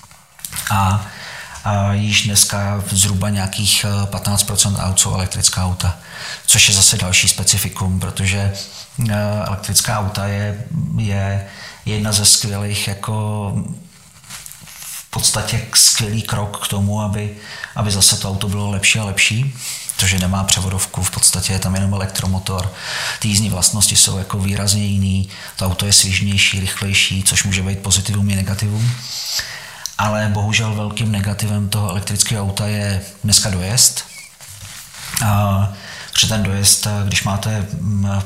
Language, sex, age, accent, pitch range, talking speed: Czech, male, 40-59, native, 95-105 Hz, 130 wpm